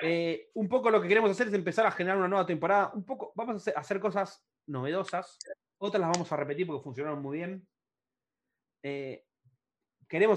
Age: 30-49